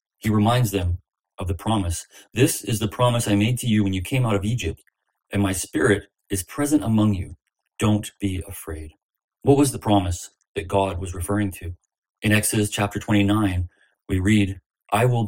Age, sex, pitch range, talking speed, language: 30-49, male, 100-105 Hz, 185 wpm, English